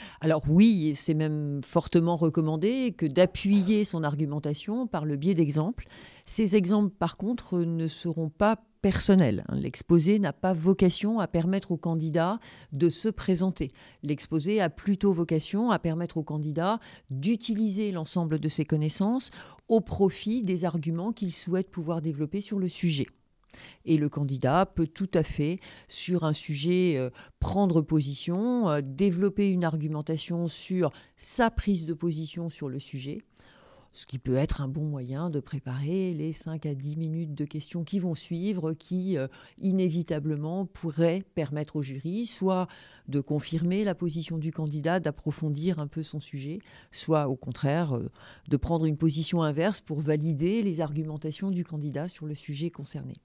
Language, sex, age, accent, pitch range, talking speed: French, female, 40-59, French, 150-190 Hz, 155 wpm